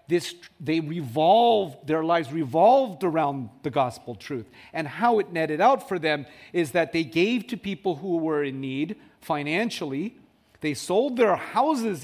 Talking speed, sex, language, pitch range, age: 160 wpm, male, English, 140-190 Hz, 40-59